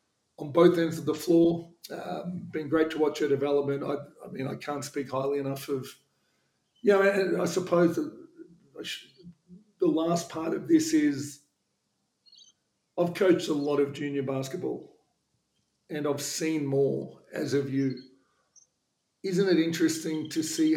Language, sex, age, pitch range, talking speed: English, male, 50-69, 145-165 Hz, 160 wpm